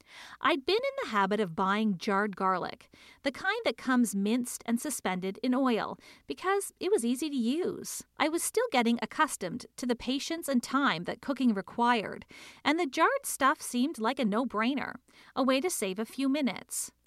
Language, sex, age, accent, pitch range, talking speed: English, female, 40-59, American, 215-280 Hz, 185 wpm